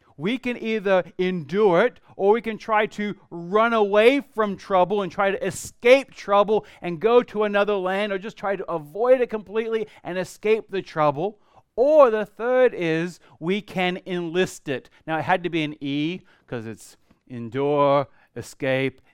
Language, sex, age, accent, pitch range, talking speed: English, male, 40-59, American, 150-205 Hz, 170 wpm